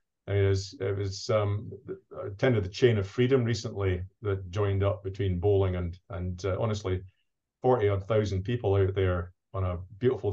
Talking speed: 185 wpm